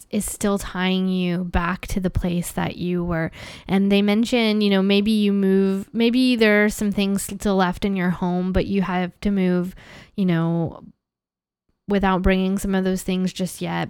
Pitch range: 180-210 Hz